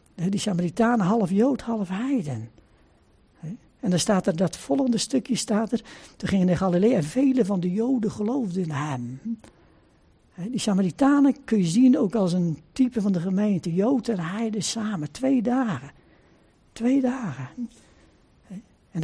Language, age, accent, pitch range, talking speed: Dutch, 60-79, Dutch, 190-265 Hz, 150 wpm